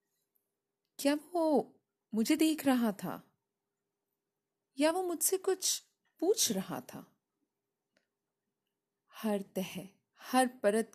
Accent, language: native, Hindi